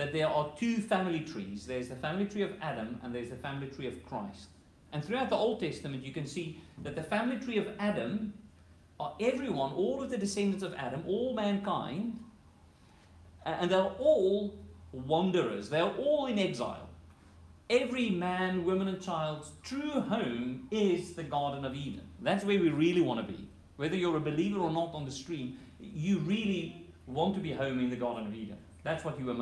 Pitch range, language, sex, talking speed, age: 125-185 Hz, English, male, 190 wpm, 40-59